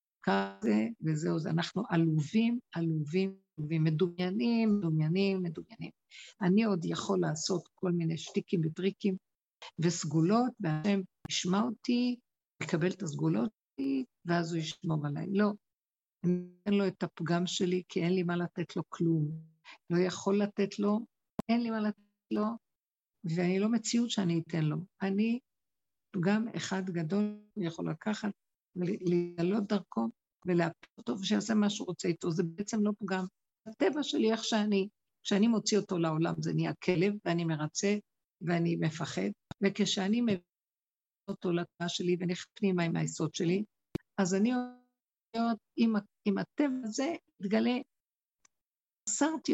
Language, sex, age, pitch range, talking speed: Hebrew, female, 50-69, 170-210 Hz, 135 wpm